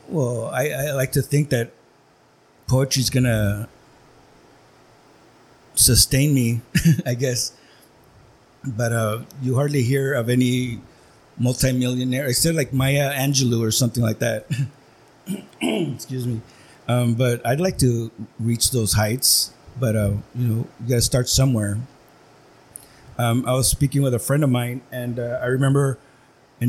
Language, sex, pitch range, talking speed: English, male, 115-135 Hz, 145 wpm